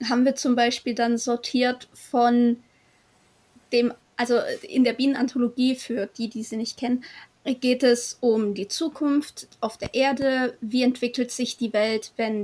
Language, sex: German, female